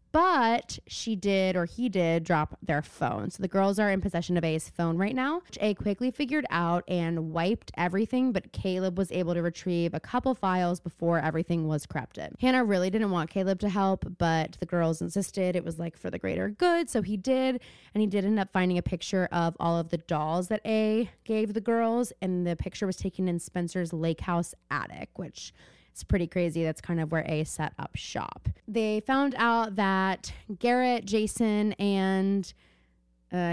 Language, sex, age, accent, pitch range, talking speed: English, female, 20-39, American, 170-215 Hz, 195 wpm